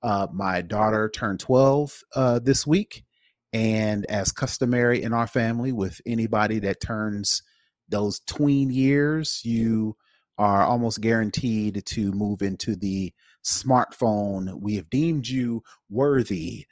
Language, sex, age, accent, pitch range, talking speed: English, male, 30-49, American, 95-120 Hz, 125 wpm